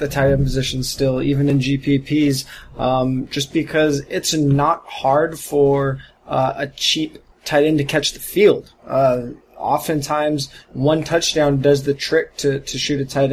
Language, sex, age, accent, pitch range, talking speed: English, male, 20-39, American, 135-145 Hz, 160 wpm